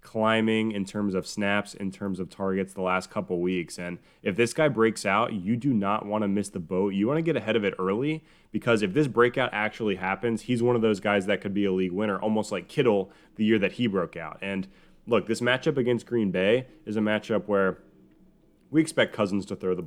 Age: 20-39